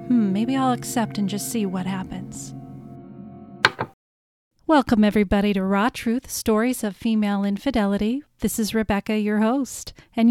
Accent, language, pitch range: American, English, 200-230 Hz